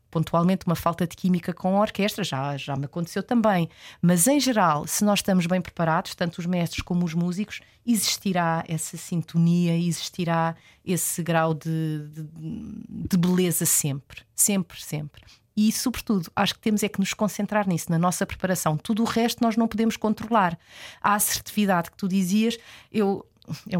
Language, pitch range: Portuguese, 170-210 Hz